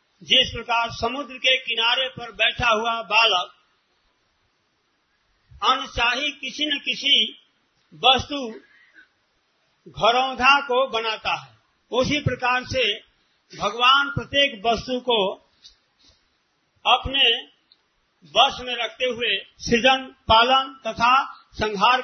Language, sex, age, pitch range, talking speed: Hindi, male, 50-69, 225-280 Hz, 95 wpm